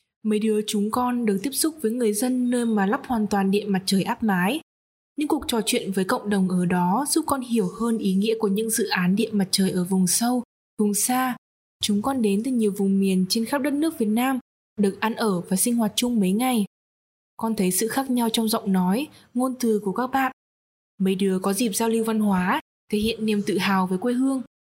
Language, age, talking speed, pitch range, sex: Vietnamese, 20-39, 235 wpm, 200-245 Hz, female